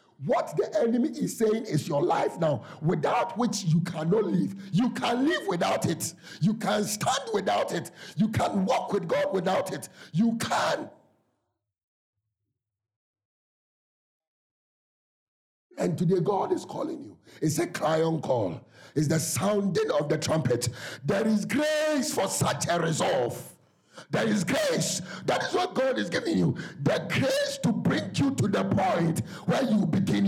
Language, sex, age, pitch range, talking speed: English, male, 50-69, 150-230 Hz, 155 wpm